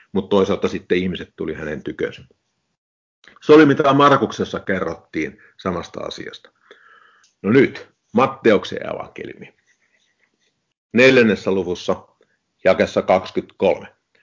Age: 50-69